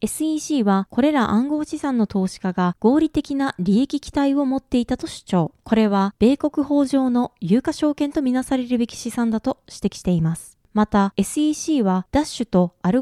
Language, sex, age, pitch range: Japanese, female, 20-39, 195-280 Hz